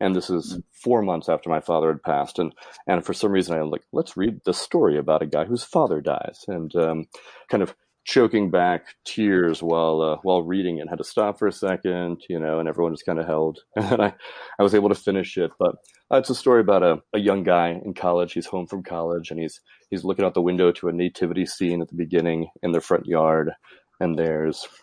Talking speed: 235 wpm